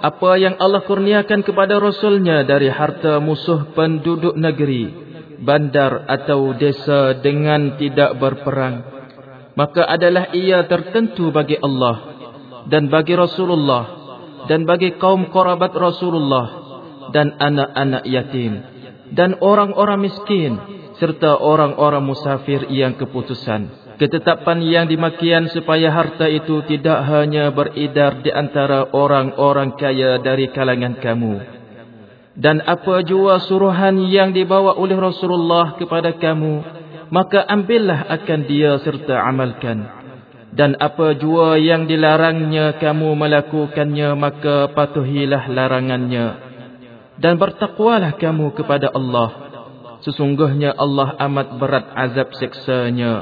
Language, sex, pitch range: English, male, 135-175 Hz